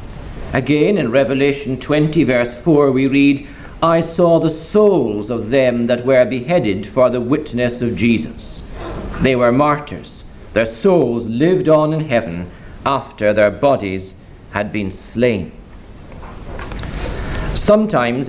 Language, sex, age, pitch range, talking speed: English, male, 50-69, 110-155 Hz, 125 wpm